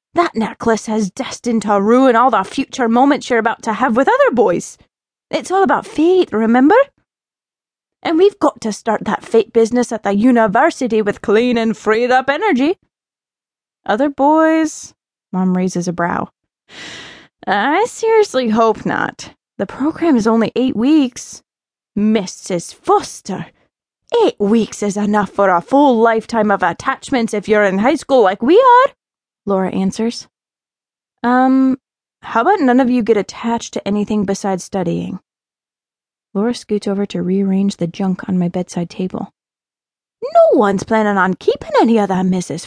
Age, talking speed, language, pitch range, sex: 20-39, 155 wpm, English, 200-265 Hz, female